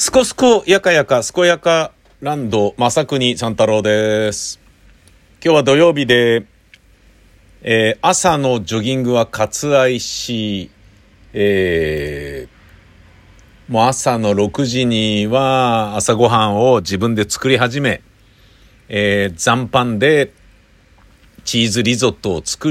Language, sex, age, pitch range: Japanese, male, 50-69, 90-120 Hz